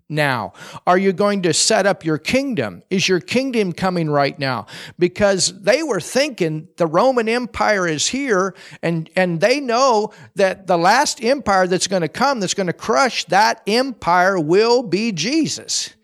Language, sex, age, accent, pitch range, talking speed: German, male, 50-69, American, 170-230 Hz, 170 wpm